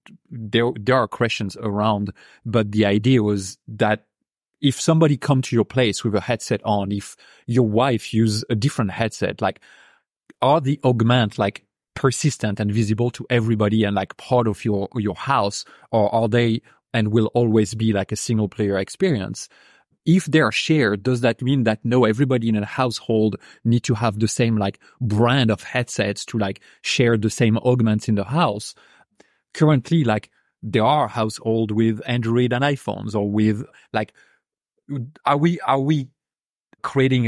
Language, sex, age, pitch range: English, male, 30-49, 105-125 Hz